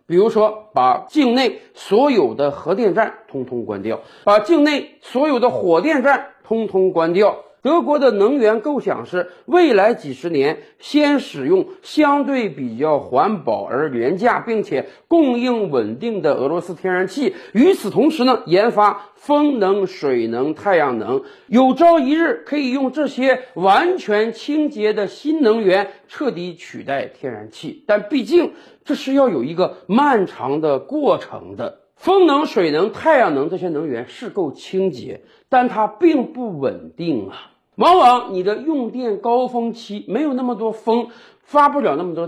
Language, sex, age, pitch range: Chinese, male, 50-69, 200-315 Hz